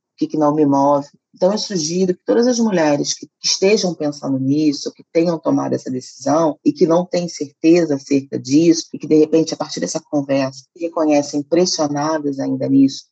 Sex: female